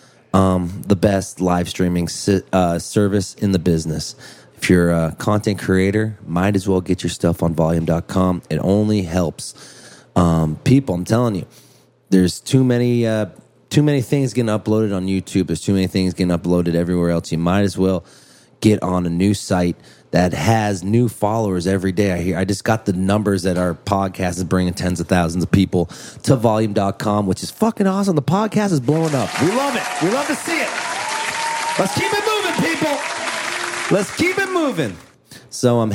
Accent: American